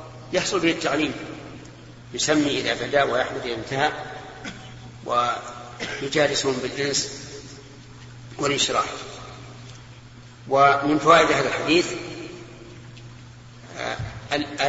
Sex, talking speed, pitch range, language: male, 60 wpm, 120-150 Hz, Arabic